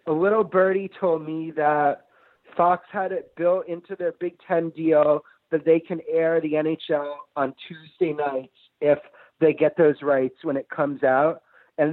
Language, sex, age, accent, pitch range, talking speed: English, male, 40-59, American, 150-175 Hz, 170 wpm